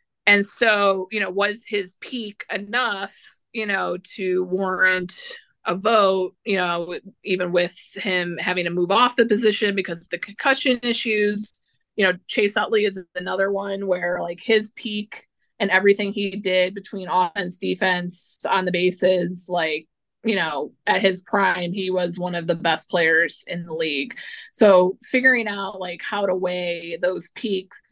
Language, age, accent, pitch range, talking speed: English, 20-39, American, 175-210 Hz, 165 wpm